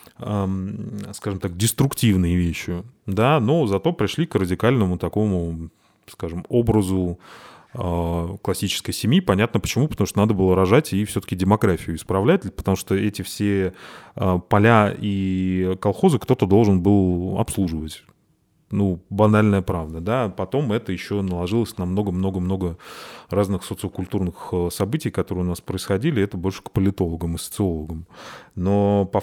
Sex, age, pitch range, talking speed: male, 20-39, 90-105 Hz, 125 wpm